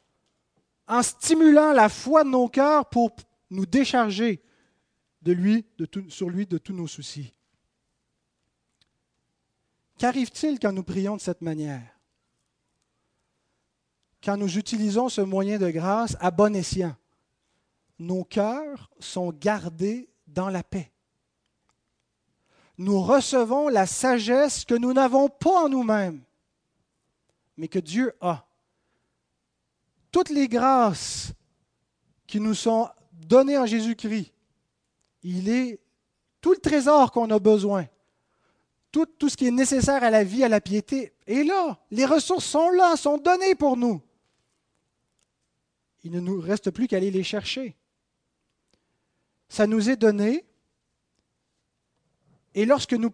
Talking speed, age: 125 wpm, 40-59